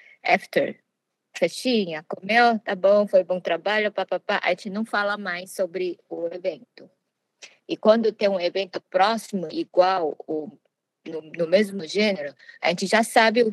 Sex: female